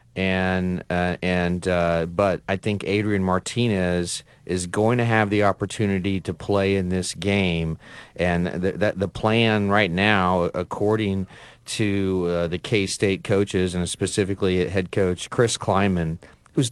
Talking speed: 140 wpm